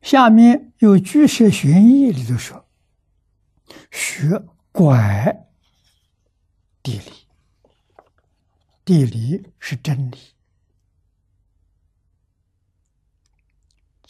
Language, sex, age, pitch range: Chinese, male, 60-79, 90-135 Hz